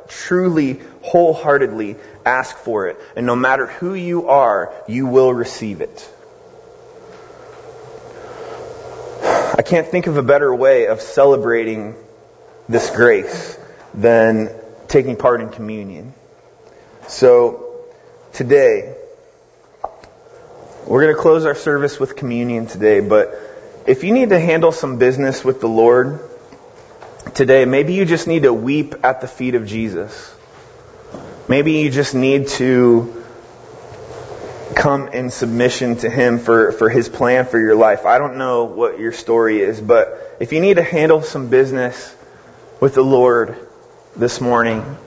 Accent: American